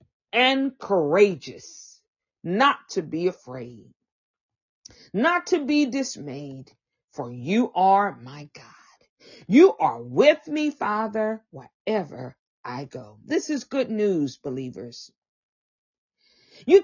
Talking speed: 105 wpm